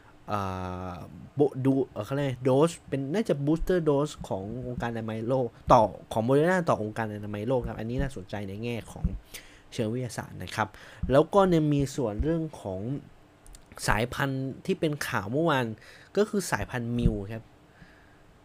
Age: 20-39